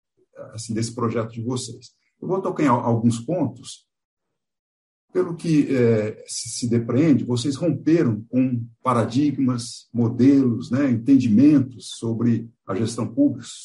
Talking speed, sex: 125 wpm, male